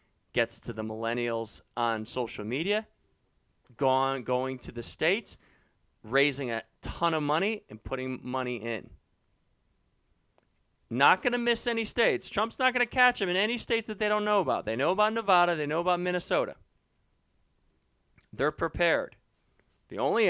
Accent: American